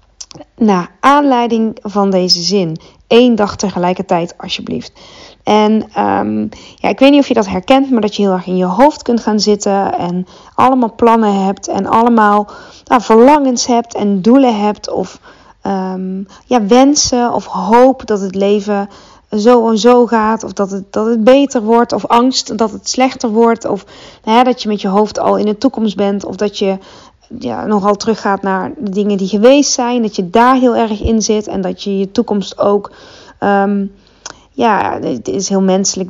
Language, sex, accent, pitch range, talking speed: Dutch, female, Dutch, 195-235 Hz, 190 wpm